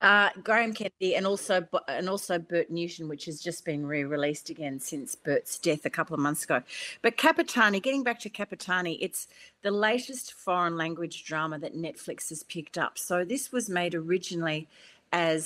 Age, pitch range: 40-59, 155-210 Hz